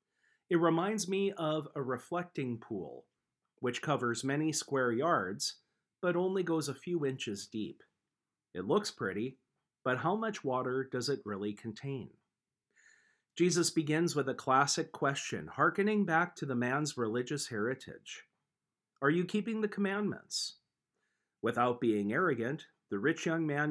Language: English